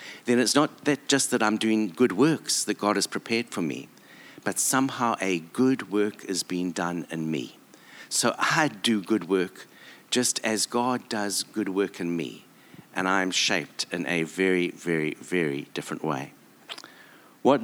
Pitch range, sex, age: 85-110 Hz, male, 60-79